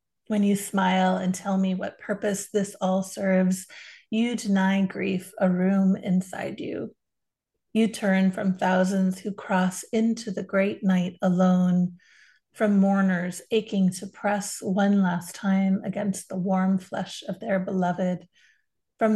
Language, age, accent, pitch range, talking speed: English, 30-49, American, 185-210 Hz, 140 wpm